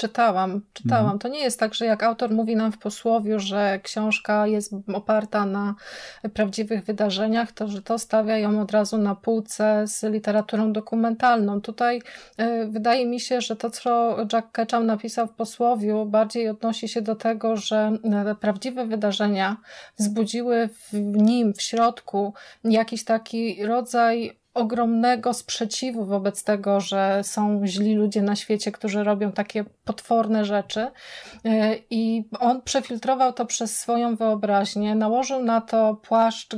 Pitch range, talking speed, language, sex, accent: 210-235 Hz, 140 wpm, Polish, female, native